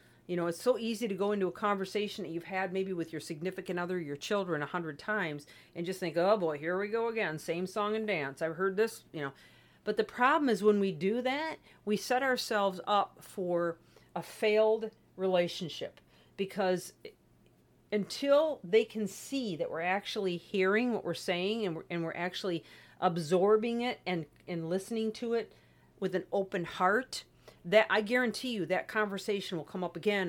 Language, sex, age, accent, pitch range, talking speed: English, female, 50-69, American, 170-215 Hz, 185 wpm